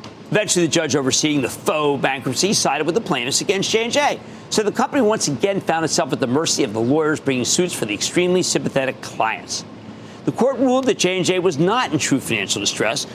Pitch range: 140-215 Hz